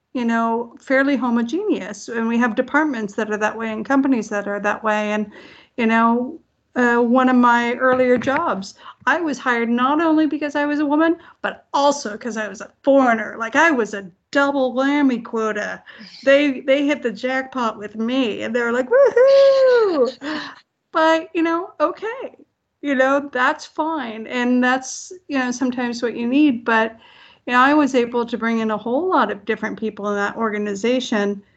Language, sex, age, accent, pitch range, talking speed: English, female, 50-69, American, 220-275 Hz, 180 wpm